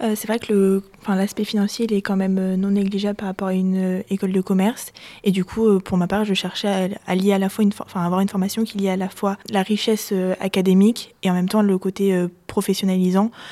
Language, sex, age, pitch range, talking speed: French, female, 20-39, 185-205 Hz, 260 wpm